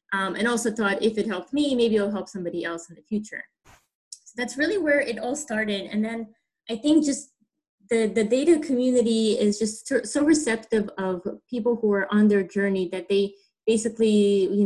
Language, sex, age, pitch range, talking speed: English, female, 20-39, 185-225 Hz, 190 wpm